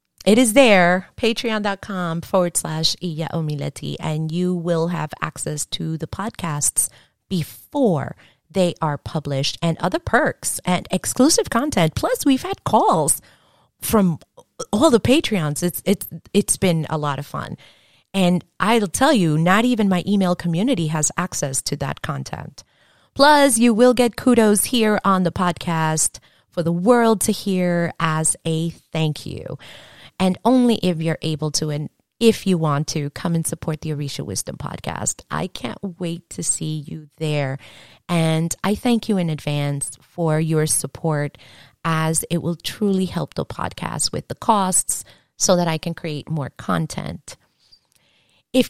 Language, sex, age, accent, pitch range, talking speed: English, female, 30-49, American, 155-200 Hz, 155 wpm